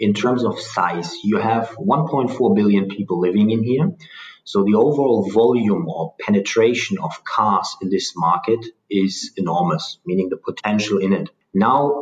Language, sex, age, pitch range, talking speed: English, male, 30-49, 100-135 Hz, 155 wpm